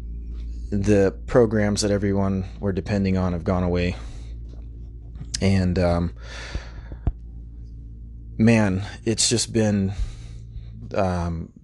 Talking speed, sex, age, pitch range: 90 wpm, male, 20-39, 80-115 Hz